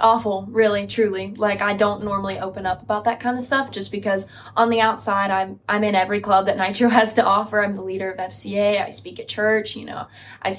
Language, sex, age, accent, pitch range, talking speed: English, female, 10-29, American, 195-215 Hz, 230 wpm